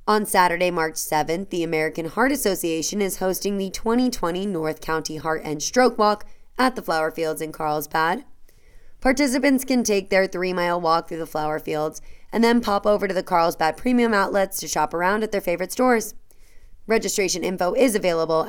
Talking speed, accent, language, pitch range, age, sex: 175 wpm, American, English, 165-210 Hz, 20-39, female